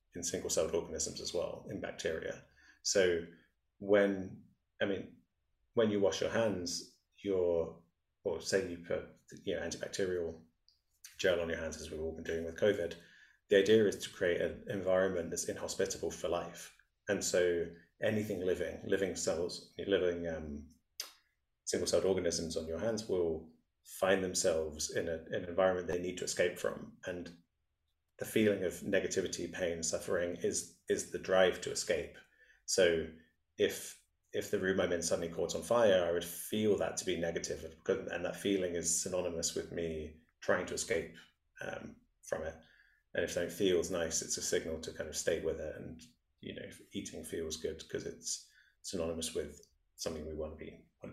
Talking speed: 170 wpm